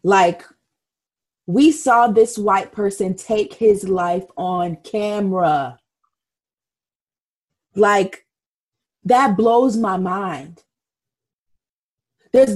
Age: 30-49